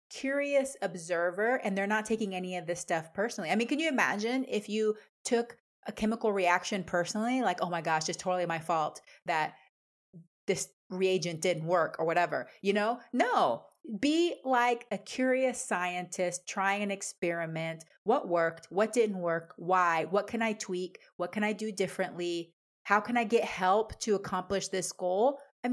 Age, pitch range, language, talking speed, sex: 30-49, 180-230 Hz, English, 175 wpm, female